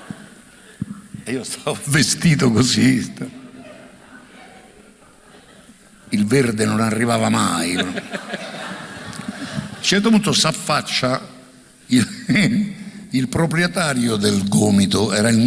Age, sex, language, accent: 60-79, male, Italian, native